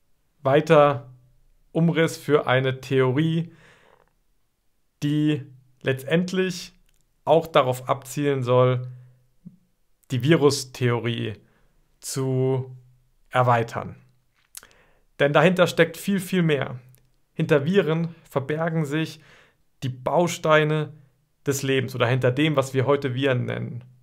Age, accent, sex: 50-69, German, male